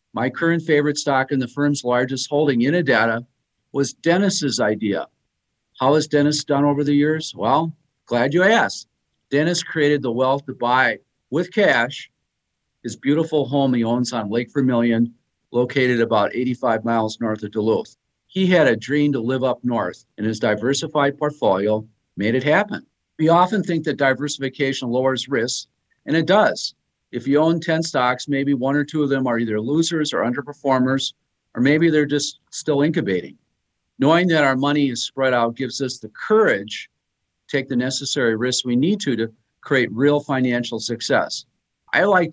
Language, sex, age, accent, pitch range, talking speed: English, male, 50-69, American, 120-145 Hz, 170 wpm